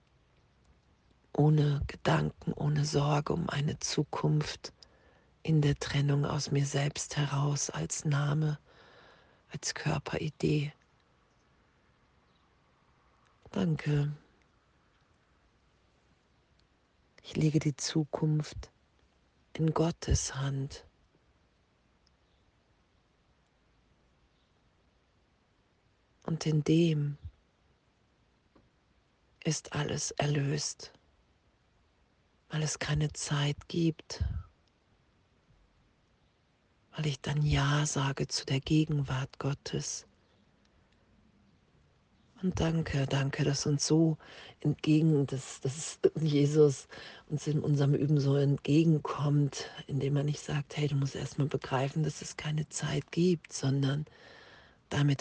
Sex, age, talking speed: female, 40-59, 85 wpm